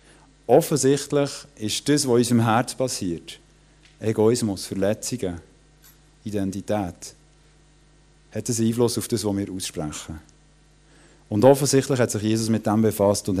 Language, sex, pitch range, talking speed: German, male, 105-140 Hz, 125 wpm